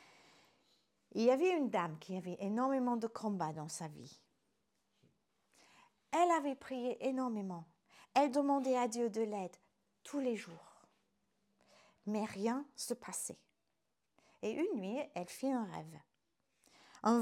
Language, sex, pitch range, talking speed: French, female, 195-275 Hz, 135 wpm